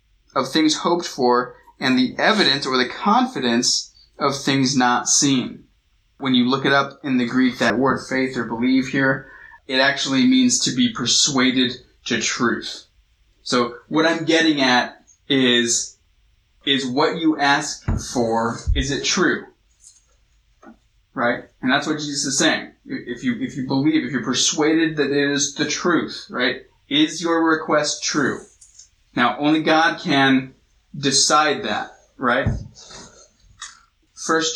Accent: American